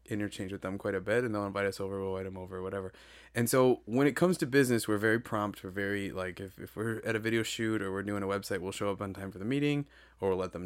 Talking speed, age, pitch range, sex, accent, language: 300 wpm, 20-39, 100-135 Hz, male, American, English